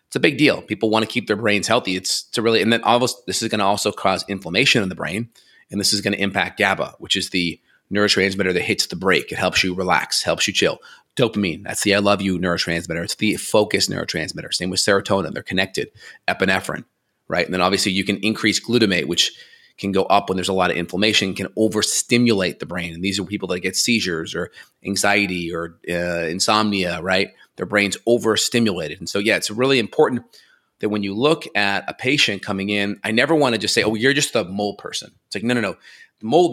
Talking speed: 225 wpm